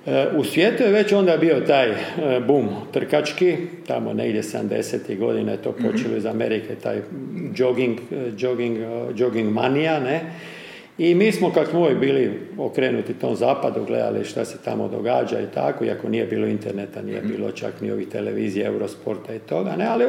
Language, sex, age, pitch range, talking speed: Croatian, male, 50-69, 150-200 Hz, 165 wpm